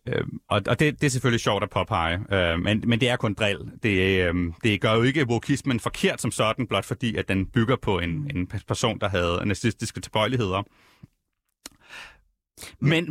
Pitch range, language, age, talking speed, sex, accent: 105-150 Hz, Danish, 30-49, 170 wpm, male, native